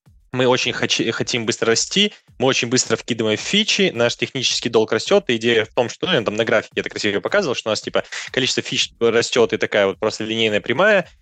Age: 20-39